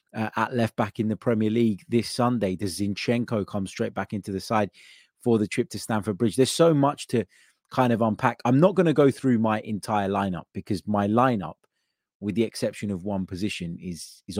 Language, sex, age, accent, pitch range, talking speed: English, male, 20-39, British, 95-115 Hz, 215 wpm